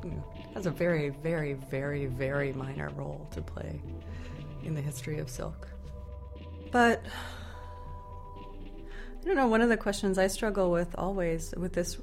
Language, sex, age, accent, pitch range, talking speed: English, female, 30-49, American, 140-170 Hz, 155 wpm